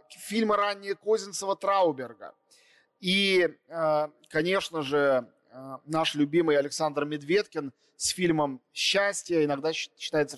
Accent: native